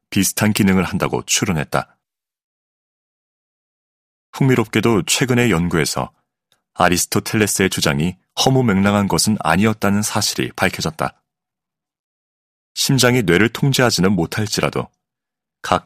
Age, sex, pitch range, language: 40-59, male, 90-115 Hz, Korean